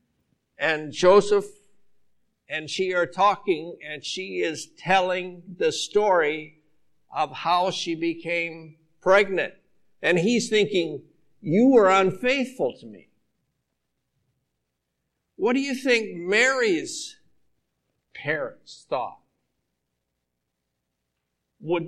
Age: 60-79